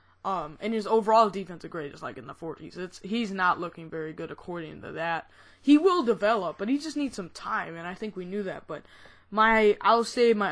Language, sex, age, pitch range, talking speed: English, female, 20-39, 180-235 Hz, 230 wpm